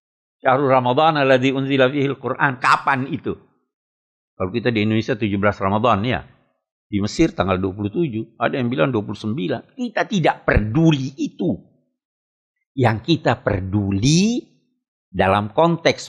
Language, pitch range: Indonesian, 100-140 Hz